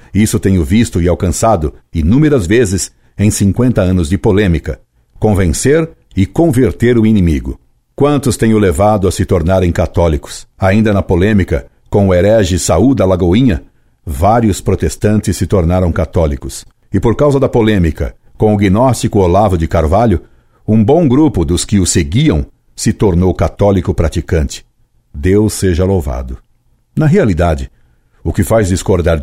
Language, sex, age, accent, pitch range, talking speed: Portuguese, male, 60-79, Brazilian, 90-115 Hz, 140 wpm